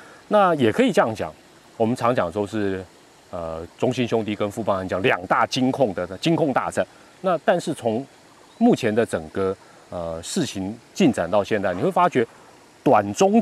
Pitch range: 100-135 Hz